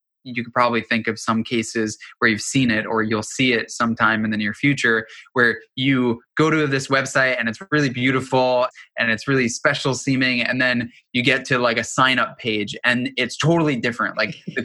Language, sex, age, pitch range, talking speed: English, male, 20-39, 120-150 Hz, 210 wpm